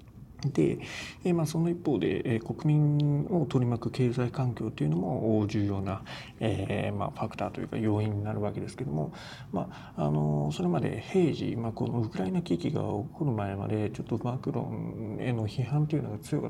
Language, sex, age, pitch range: Japanese, male, 40-59, 110-140 Hz